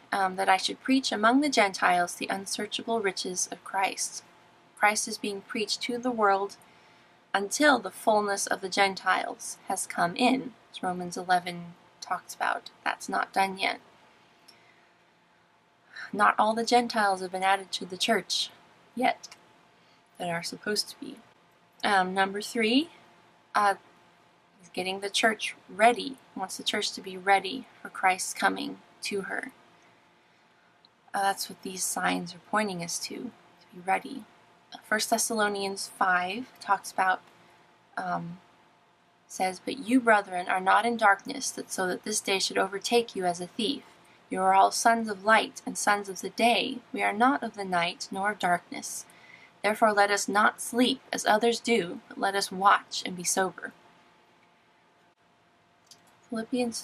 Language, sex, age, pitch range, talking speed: English, female, 20-39, 185-230 Hz, 155 wpm